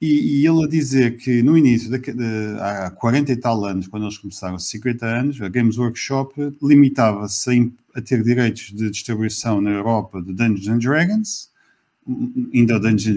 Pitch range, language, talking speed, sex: 110-145 Hz, Portuguese, 155 wpm, male